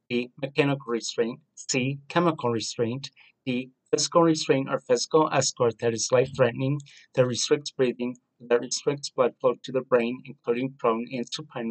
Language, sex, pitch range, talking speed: English, male, 120-150 Hz, 155 wpm